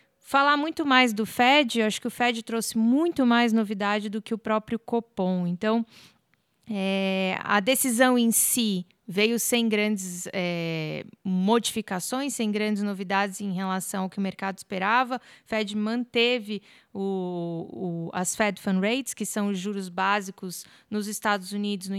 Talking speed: 160 wpm